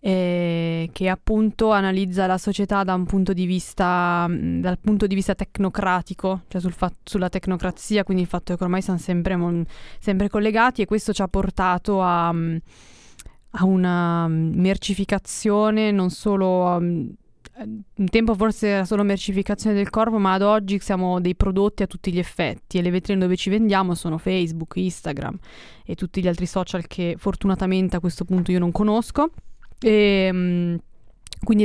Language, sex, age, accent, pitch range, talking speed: Italian, female, 20-39, native, 180-205 Hz, 155 wpm